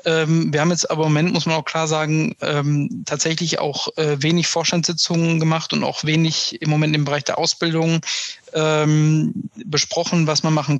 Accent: German